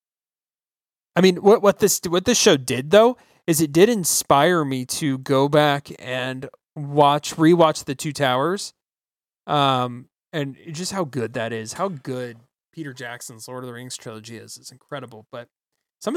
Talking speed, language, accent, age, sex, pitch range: 165 wpm, English, American, 20-39, male, 130-170 Hz